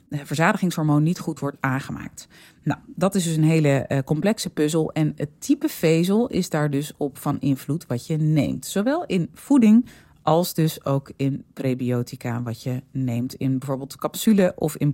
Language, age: Dutch, 30-49